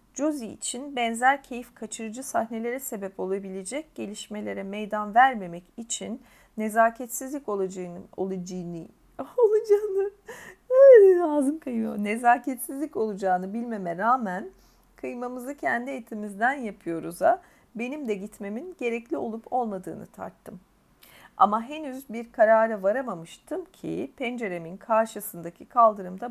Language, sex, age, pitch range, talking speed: Turkish, female, 40-59, 205-270 Hz, 90 wpm